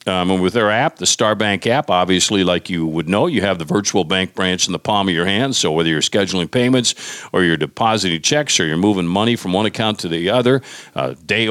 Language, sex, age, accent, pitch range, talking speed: English, male, 50-69, American, 90-120 Hz, 240 wpm